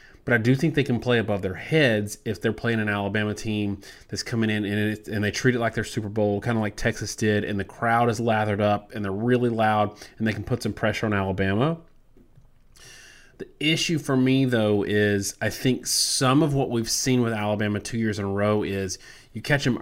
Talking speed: 225 wpm